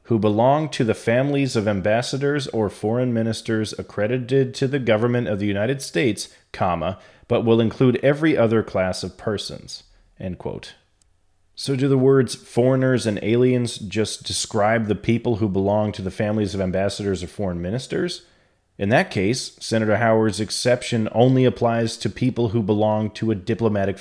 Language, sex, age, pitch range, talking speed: English, male, 30-49, 100-125 Hz, 160 wpm